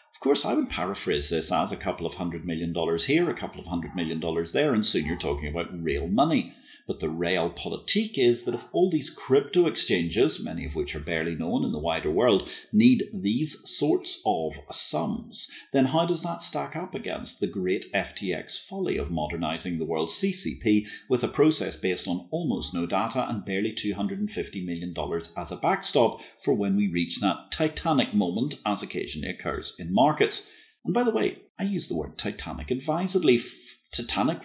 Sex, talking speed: male, 190 wpm